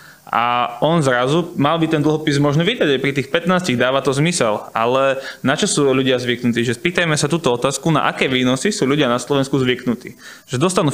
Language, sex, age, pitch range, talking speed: Slovak, male, 20-39, 130-150 Hz, 200 wpm